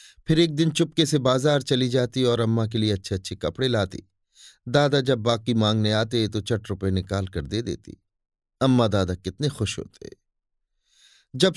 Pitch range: 100-135 Hz